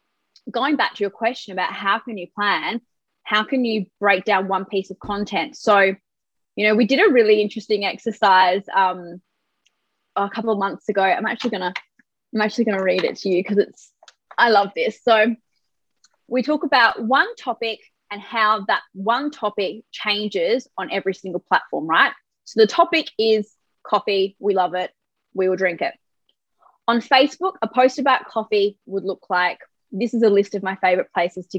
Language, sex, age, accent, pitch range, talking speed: English, female, 20-39, Australian, 195-245 Hz, 180 wpm